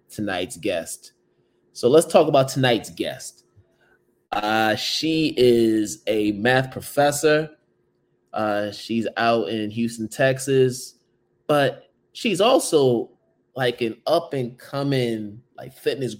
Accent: American